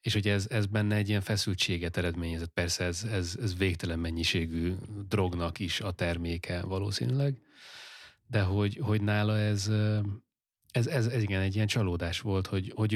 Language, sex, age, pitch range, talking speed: Hungarian, male, 30-49, 90-105 Hz, 160 wpm